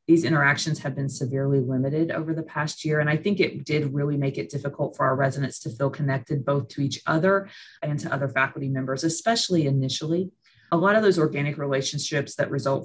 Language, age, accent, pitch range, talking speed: English, 30-49, American, 140-160 Hz, 205 wpm